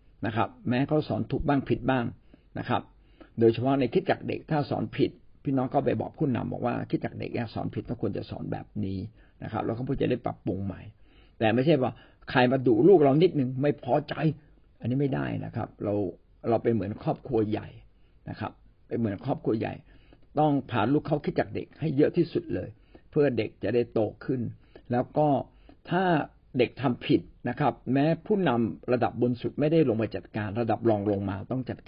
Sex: male